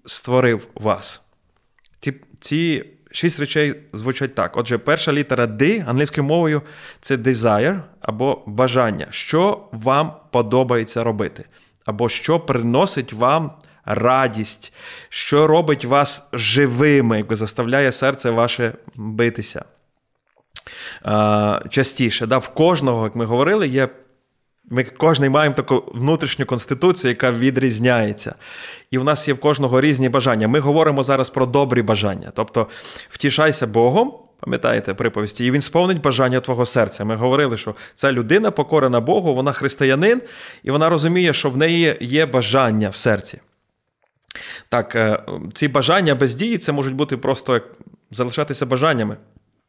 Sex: male